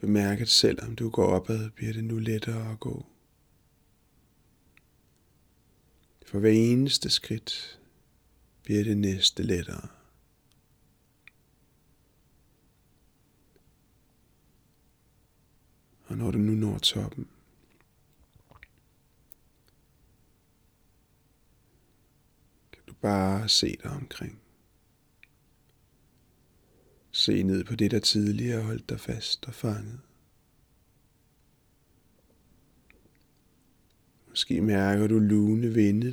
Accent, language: native, Danish